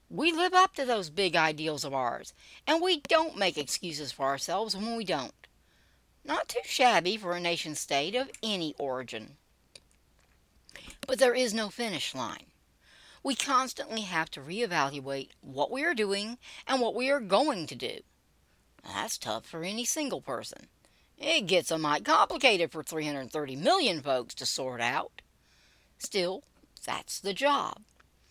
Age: 60-79